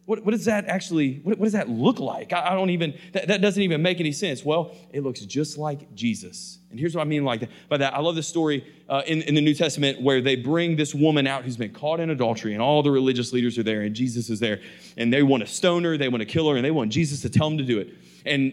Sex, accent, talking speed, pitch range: male, American, 295 wpm, 135-180 Hz